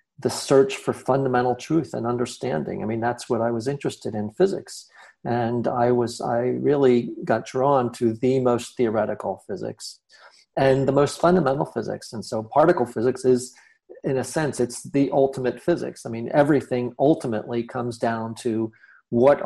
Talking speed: 165 wpm